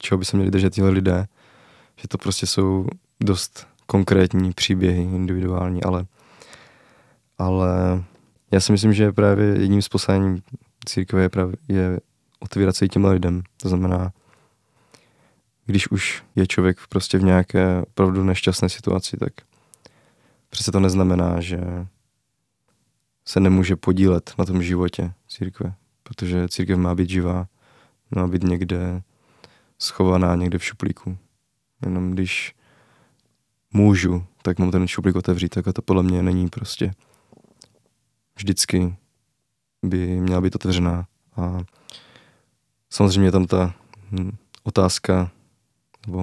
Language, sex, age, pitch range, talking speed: Czech, male, 20-39, 90-105 Hz, 120 wpm